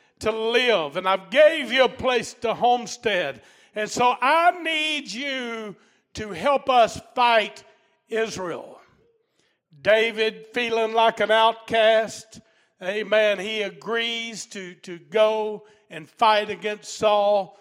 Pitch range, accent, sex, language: 185-225 Hz, American, male, English